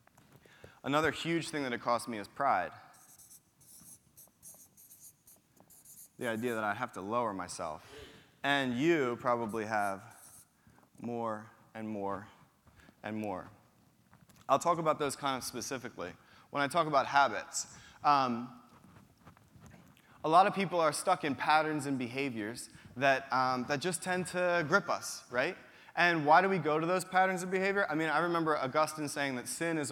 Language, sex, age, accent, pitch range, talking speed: English, male, 20-39, American, 120-150 Hz, 155 wpm